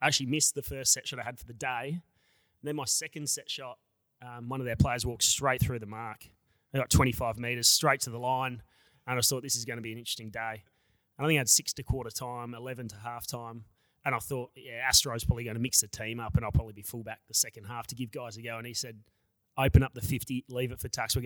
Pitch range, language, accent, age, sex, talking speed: 115-140 Hz, English, Australian, 30-49, male, 275 wpm